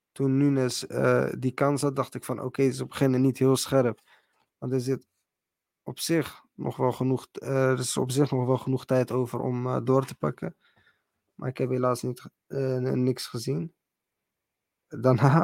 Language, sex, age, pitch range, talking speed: Dutch, male, 20-39, 125-135 Hz, 180 wpm